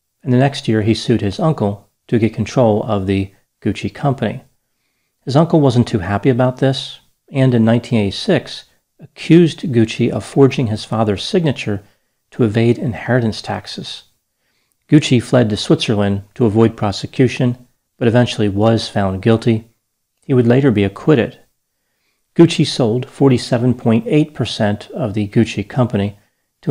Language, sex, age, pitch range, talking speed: English, male, 40-59, 105-130 Hz, 135 wpm